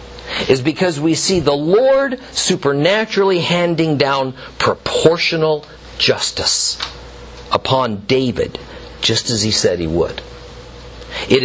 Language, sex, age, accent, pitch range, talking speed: English, male, 50-69, American, 115-185 Hz, 105 wpm